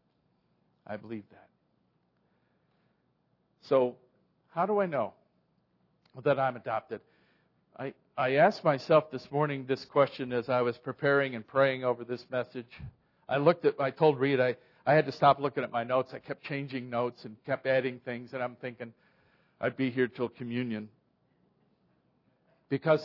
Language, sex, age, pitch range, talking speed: English, male, 50-69, 130-175 Hz, 155 wpm